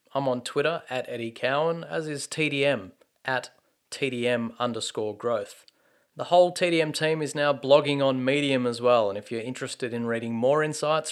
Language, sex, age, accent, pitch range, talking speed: English, male, 30-49, Australian, 115-145 Hz, 175 wpm